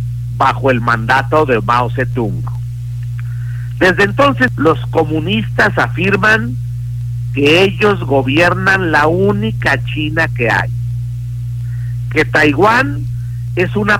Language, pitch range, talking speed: Spanish, 120-130 Hz, 100 wpm